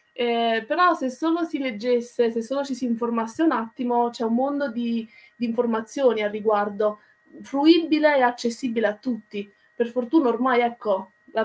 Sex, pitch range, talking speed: female, 225-265 Hz, 160 wpm